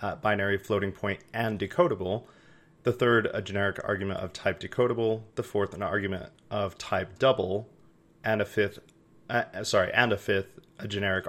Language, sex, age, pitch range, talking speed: English, male, 30-49, 100-130 Hz, 165 wpm